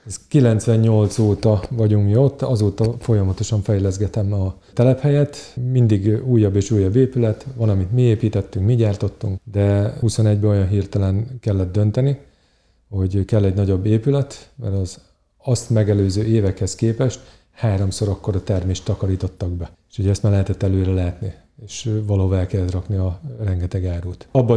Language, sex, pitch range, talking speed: Hungarian, male, 100-120 Hz, 145 wpm